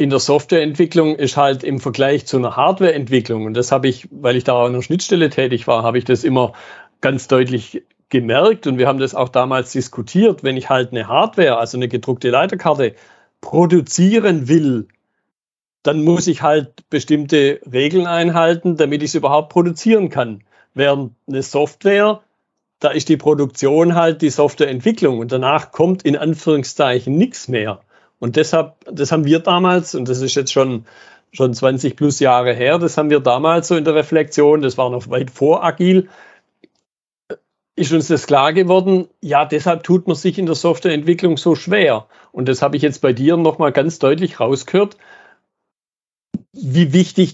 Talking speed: 170 wpm